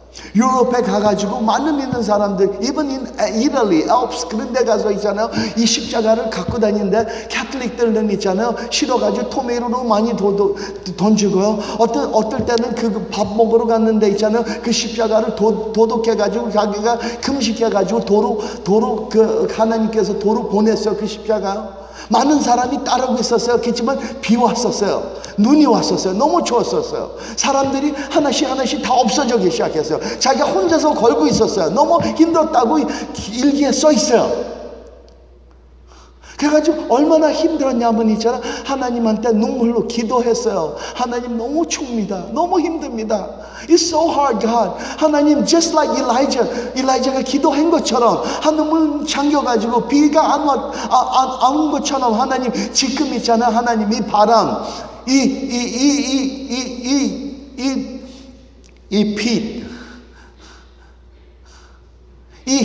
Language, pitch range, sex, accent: Korean, 215-265 Hz, male, native